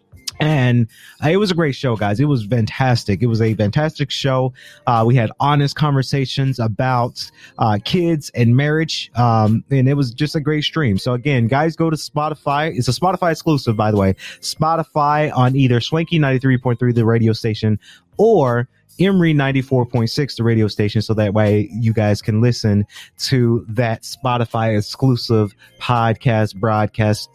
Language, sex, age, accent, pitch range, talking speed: English, male, 30-49, American, 115-160 Hz, 160 wpm